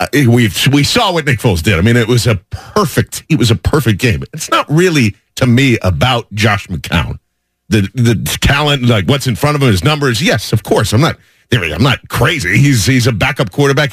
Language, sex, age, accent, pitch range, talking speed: English, male, 50-69, American, 115-155 Hz, 225 wpm